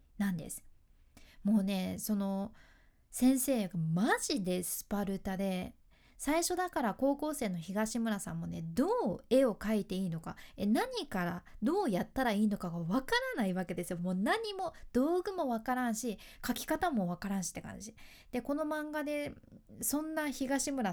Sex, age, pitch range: female, 20-39, 195-270 Hz